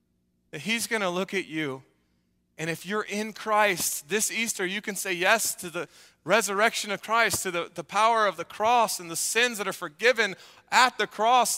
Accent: American